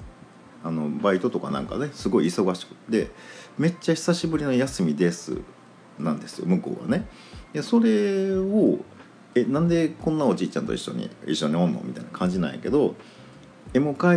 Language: Japanese